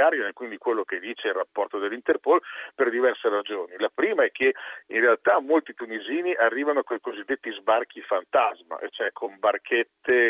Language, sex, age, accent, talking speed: Italian, male, 50-69, native, 165 wpm